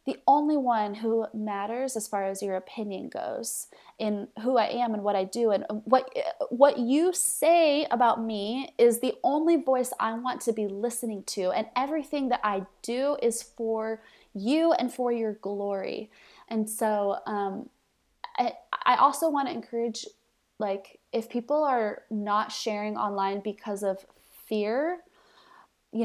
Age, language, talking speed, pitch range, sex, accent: 20-39, English, 155 wpm, 205-250 Hz, female, American